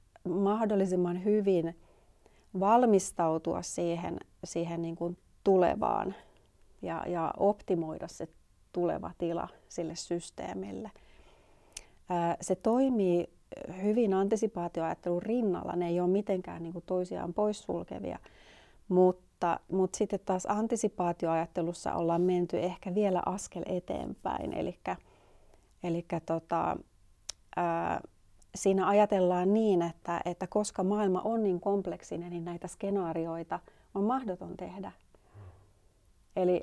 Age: 30-49